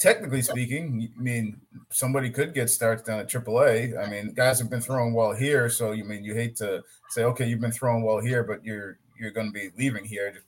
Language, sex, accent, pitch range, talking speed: English, male, American, 110-125 Hz, 240 wpm